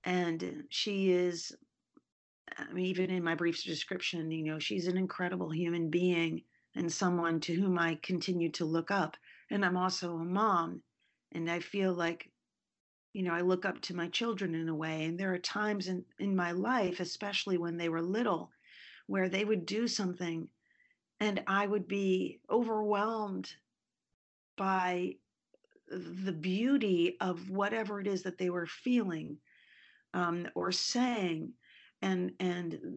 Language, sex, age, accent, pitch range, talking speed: English, female, 40-59, American, 170-195 Hz, 155 wpm